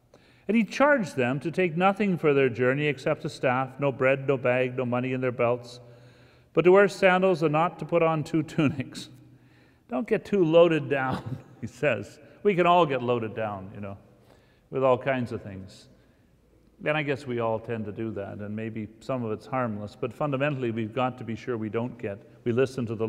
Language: English